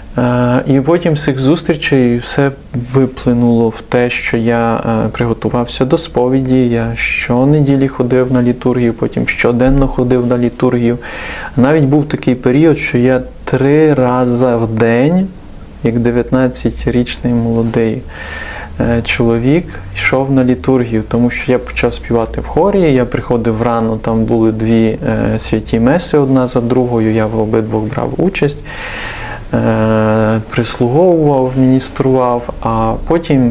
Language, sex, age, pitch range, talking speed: Ukrainian, male, 20-39, 115-140 Hz, 120 wpm